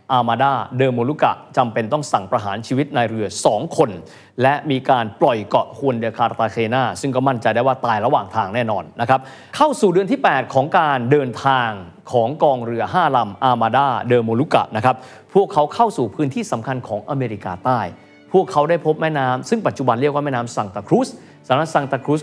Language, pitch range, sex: Thai, 115-150 Hz, male